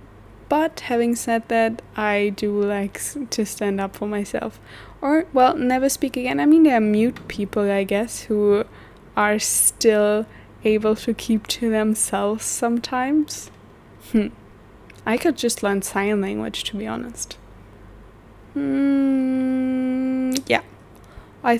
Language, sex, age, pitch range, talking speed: English, female, 20-39, 195-225 Hz, 130 wpm